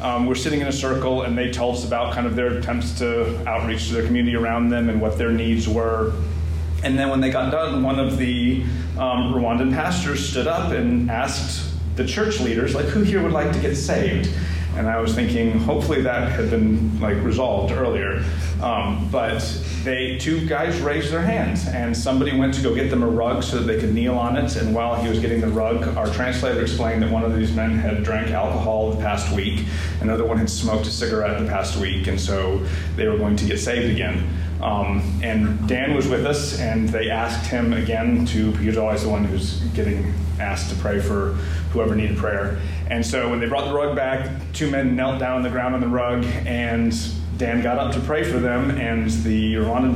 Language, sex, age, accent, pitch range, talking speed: English, male, 30-49, American, 80-115 Hz, 220 wpm